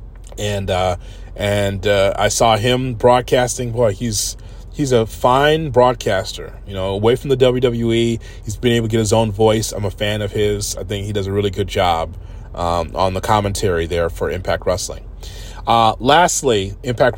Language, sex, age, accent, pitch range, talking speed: English, male, 30-49, American, 95-120 Hz, 180 wpm